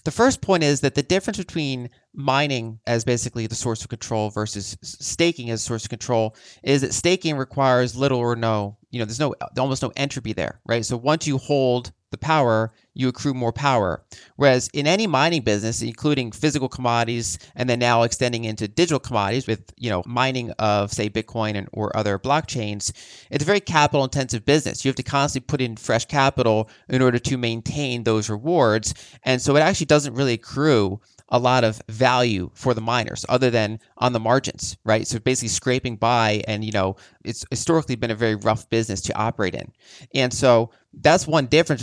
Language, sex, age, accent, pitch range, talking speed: English, male, 30-49, American, 110-135 Hz, 190 wpm